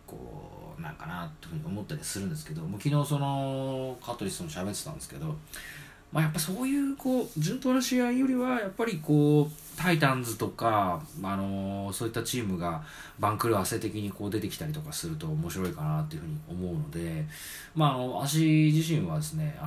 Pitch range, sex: 110-165 Hz, male